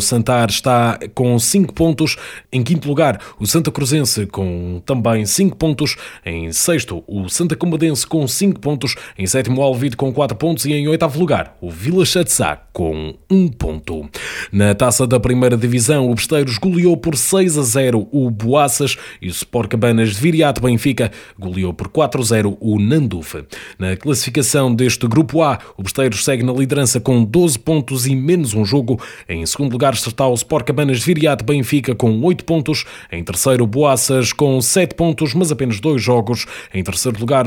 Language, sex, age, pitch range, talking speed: Portuguese, male, 20-39, 110-150 Hz, 180 wpm